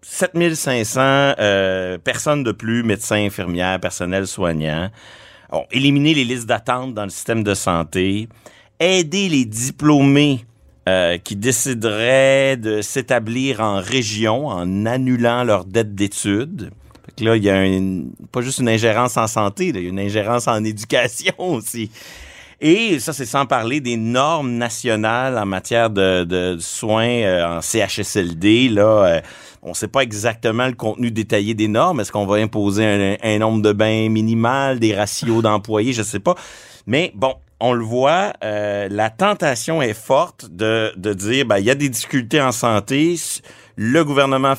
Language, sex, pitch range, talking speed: French, male, 105-130 Hz, 165 wpm